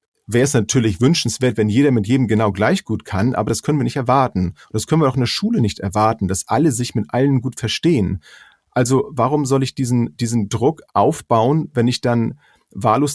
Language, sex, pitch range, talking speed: German, male, 105-130 Hz, 210 wpm